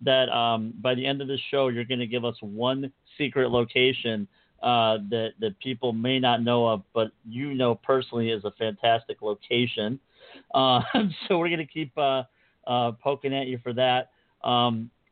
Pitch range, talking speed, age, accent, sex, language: 115-130 Hz, 185 wpm, 50-69, American, male, English